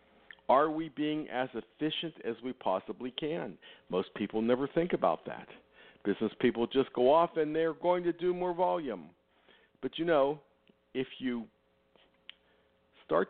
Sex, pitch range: male, 105-150 Hz